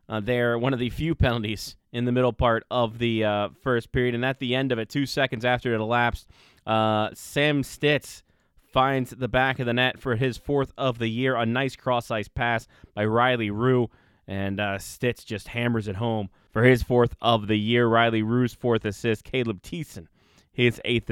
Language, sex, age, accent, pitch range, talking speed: English, male, 20-39, American, 105-125 Hz, 200 wpm